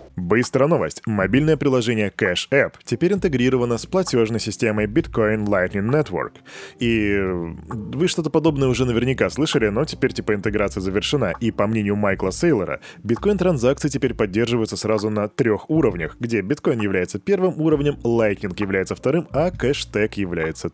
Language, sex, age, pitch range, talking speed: Russian, male, 20-39, 105-135 Hz, 145 wpm